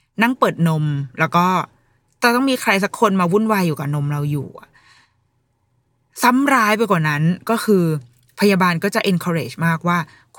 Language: Thai